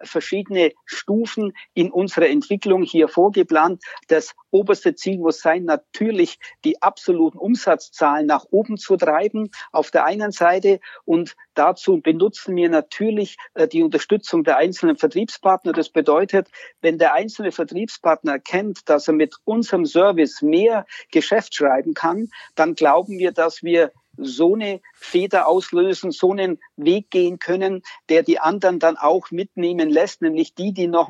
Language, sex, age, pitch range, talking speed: German, male, 50-69, 165-225 Hz, 145 wpm